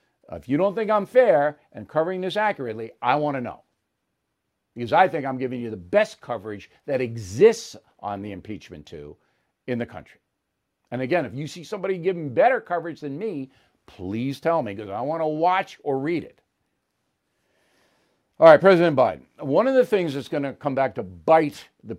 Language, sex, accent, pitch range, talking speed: English, male, American, 125-175 Hz, 190 wpm